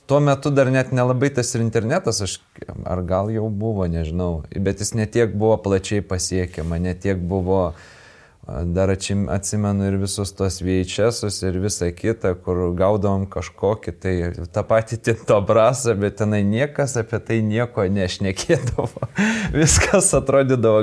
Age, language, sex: 20-39, English, male